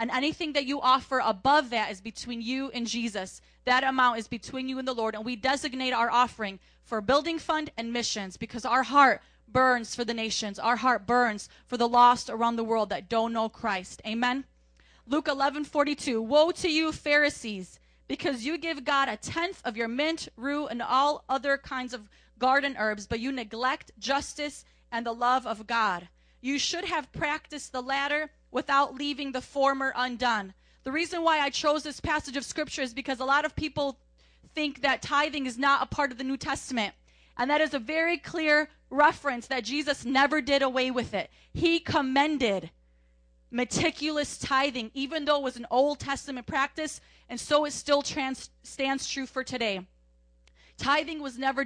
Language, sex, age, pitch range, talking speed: English, female, 30-49, 240-290 Hz, 180 wpm